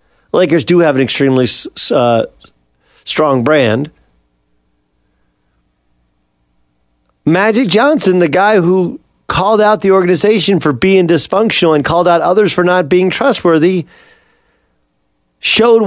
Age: 40-59